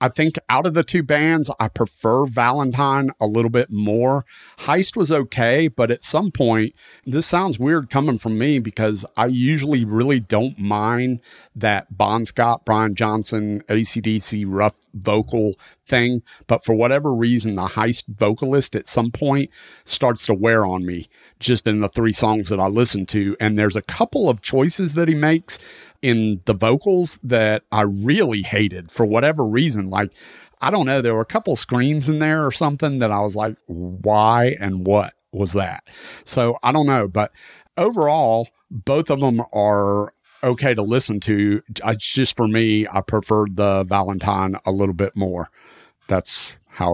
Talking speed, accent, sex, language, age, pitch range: 175 wpm, American, male, English, 40-59, 105-135 Hz